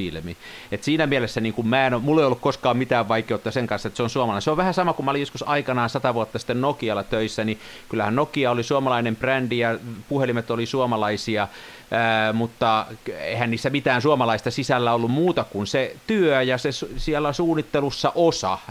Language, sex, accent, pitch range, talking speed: Finnish, male, native, 110-135 Hz, 180 wpm